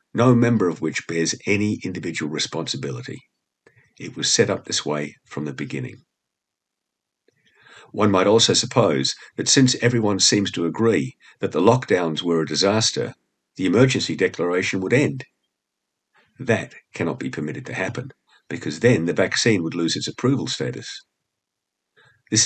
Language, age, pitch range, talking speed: English, 50-69, 80-115 Hz, 145 wpm